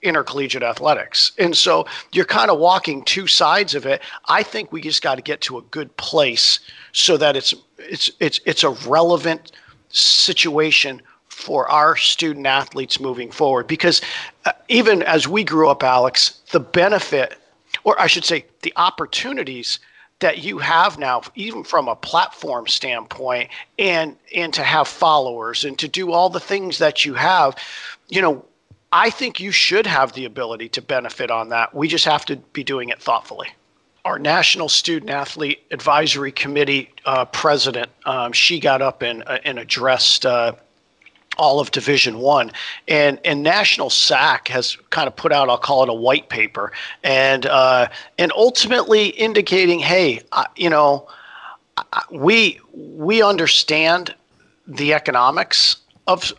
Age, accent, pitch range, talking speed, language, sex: 50-69, American, 135-175 Hz, 155 wpm, English, male